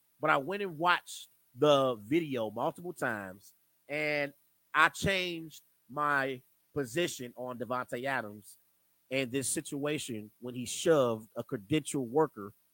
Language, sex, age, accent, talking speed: English, male, 30-49, American, 120 wpm